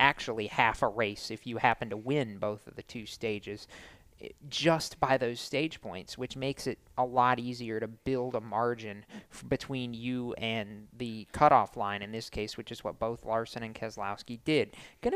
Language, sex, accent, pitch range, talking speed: English, male, American, 115-165 Hz, 185 wpm